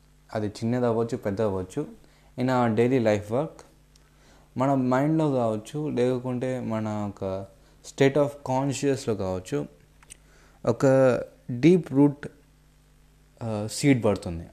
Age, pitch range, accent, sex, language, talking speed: 20-39, 110-150 Hz, native, male, Telugu, 105 wpm